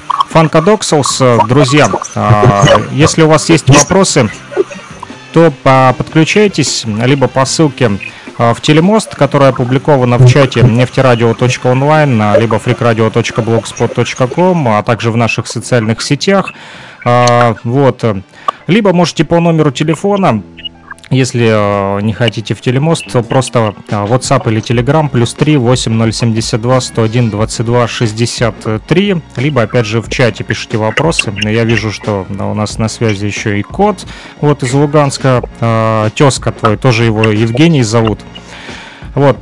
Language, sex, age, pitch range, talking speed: Russian, male, 30-49, 115-150 Hz, 115 wpm